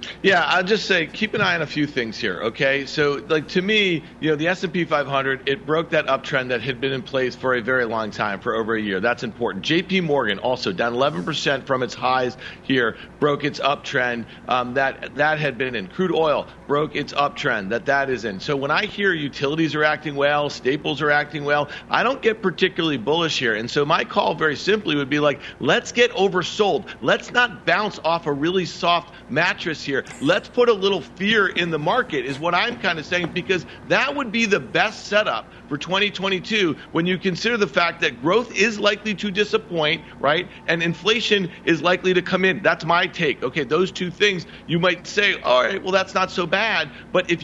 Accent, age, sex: American, 50-69, male